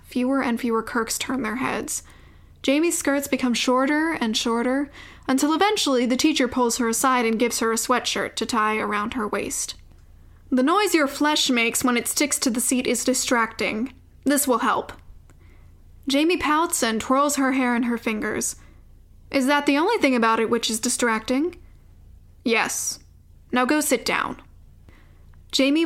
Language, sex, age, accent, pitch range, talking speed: English, female, 10-29, American, 215-260 Hz, 165 wpm